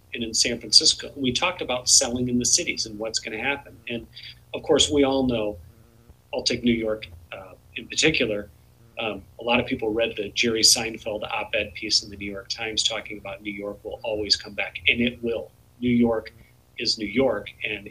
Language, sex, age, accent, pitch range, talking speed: English, male, 40-59, American, 110-140 Hz, 210 wpm